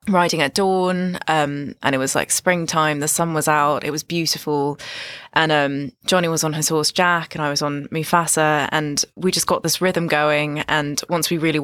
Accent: British